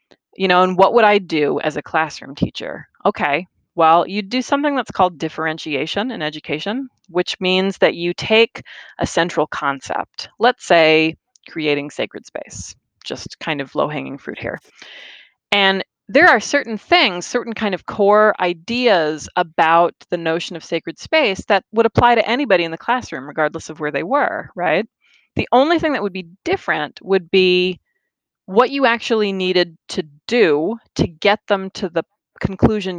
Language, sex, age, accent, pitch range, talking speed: English, female, 20-39, American, 165-215 Hz, 165 wpm